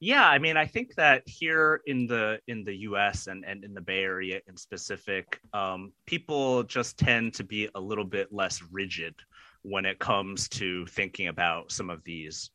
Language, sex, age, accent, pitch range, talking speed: English, male, 30-49, American, 100-135 Hz, 195 wpm